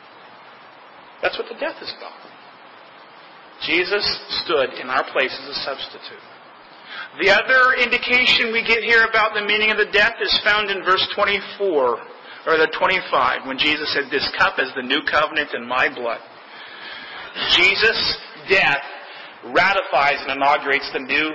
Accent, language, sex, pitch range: American, English, male, 190-245 Hz